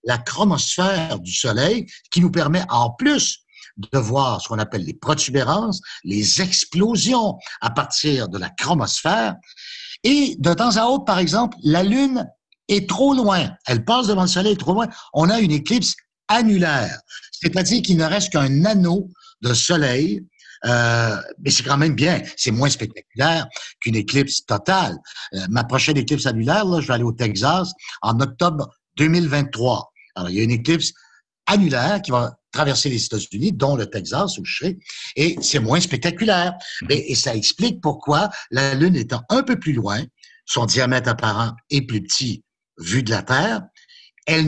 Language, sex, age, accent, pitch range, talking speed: French, male, 60-79, French, 130-200 Hz, 170 wpm